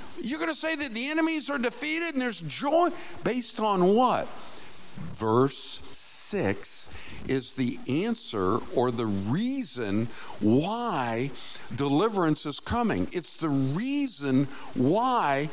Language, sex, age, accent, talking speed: English, male, 50-69, American, 120 wpm